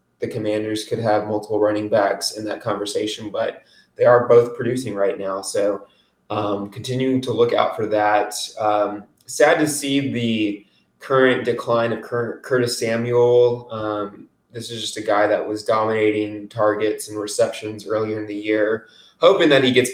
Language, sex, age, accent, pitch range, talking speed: English, male, 20-39, American, 105-120 Hz, 170 wpm